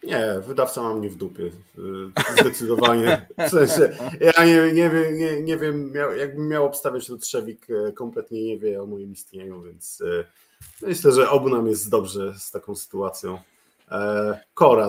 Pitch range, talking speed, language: 105-140 Hz, 155 wpm, Polish